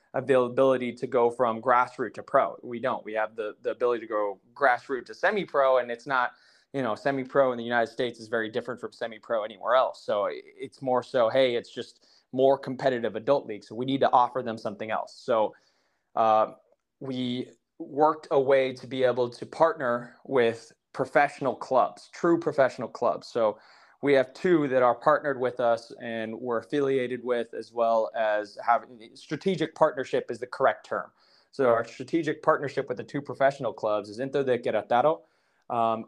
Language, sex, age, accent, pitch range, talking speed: English, male, 20-39, American, 115-140 Hz, 180 wpm